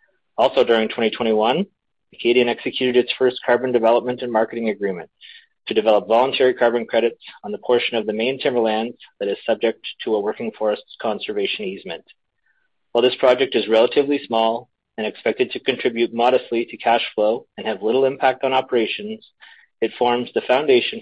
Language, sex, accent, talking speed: English, male, American, 165 wpm